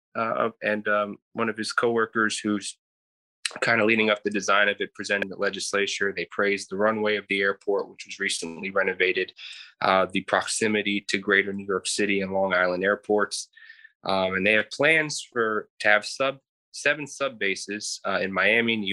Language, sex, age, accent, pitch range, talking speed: English, male, 20-39, American, 95-110 Hz, 185 wpm